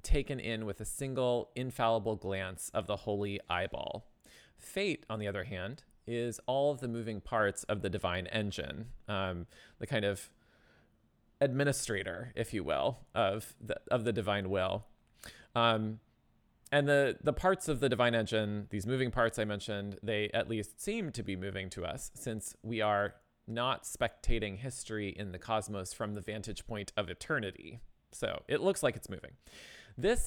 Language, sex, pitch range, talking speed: English, male, 100-125 Hz, 170 wpm